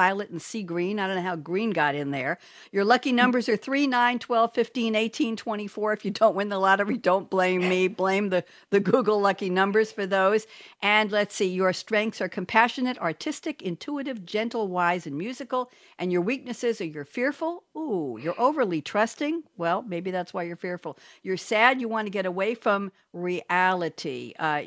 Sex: female